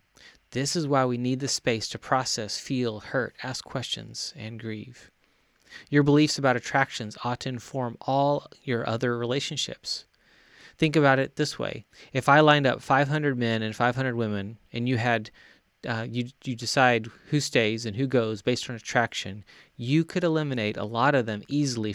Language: English